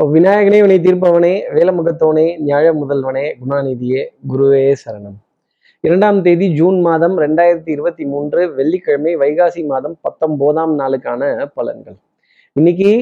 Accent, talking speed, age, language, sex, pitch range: native, 105 wpm, 20-39, Tamil, male, 135-175 Hz